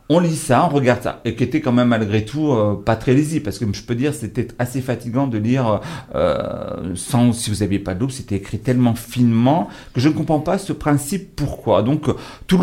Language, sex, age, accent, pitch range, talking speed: French, male, 40-59, French, 115-150 Hz, 235 wpm